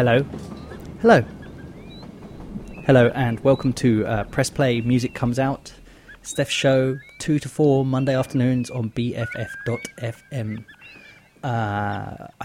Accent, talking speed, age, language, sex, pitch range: British, 105 wpm, 30-49, English, male, 115-135 Hz